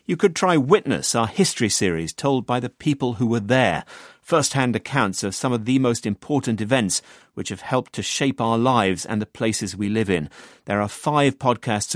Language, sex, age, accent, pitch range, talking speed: English, male, 40-59, British, 105-135 Hz, 200 wpm